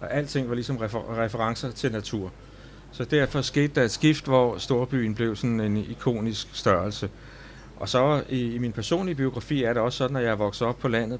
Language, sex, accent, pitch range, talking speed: Danish, male, native, 120-145 Hz, 210 wpm